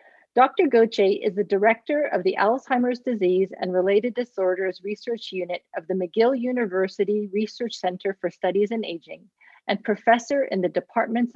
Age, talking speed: 40-59, 155 wpm